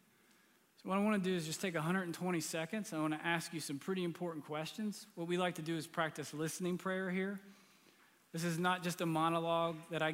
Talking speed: 220 wpm